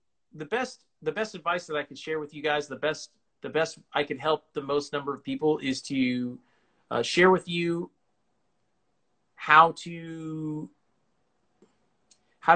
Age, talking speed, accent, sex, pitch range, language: 30-49, 160 wpm, American, male, 140-165 Hz, English